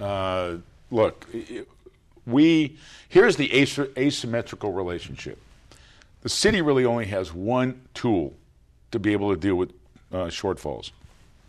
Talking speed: 115 wpm